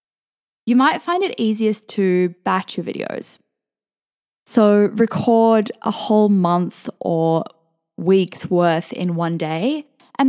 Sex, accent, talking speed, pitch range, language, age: female, Australian, 120 wpm, 180-250 Hz, English, 10-29